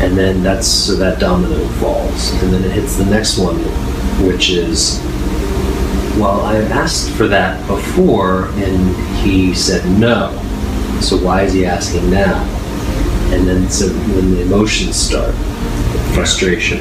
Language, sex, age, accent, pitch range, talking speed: English, male, 30-49, American, 90-100 Hz, 145 wpm